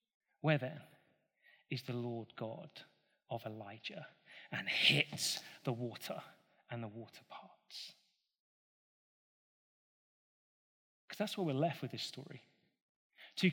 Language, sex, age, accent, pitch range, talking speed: English, male, 30-49, British, 135-185 Hz, 110 wpm